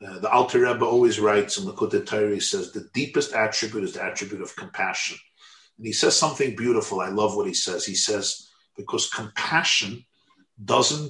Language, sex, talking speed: English, male, 190 wpm